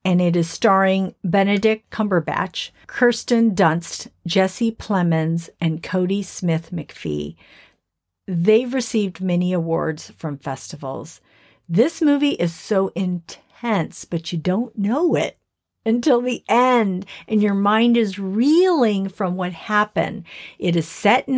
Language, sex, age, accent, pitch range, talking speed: English, female, 50-69, American, 170-225 Hz, 125 wpm